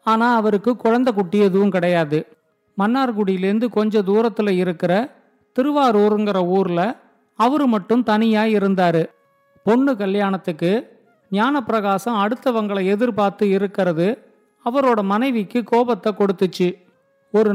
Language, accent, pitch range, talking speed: Tamil, native, 200-240 Hz, 90 wpm